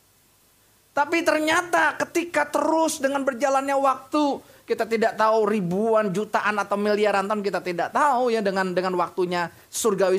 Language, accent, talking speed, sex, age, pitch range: Indonesian, native, 135 wpm, male, 30-49, 205-295 Hz